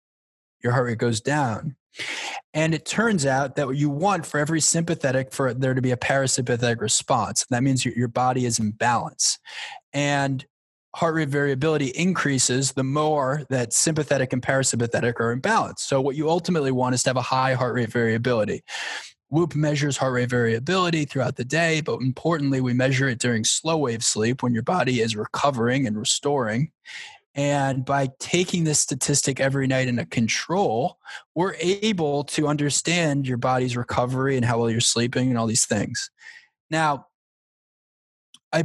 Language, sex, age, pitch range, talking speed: English, male, 20-39, 125-155 Hz, 170 wpm